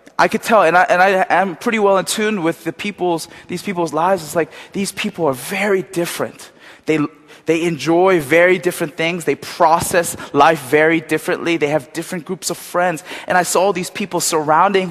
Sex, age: male, 20-39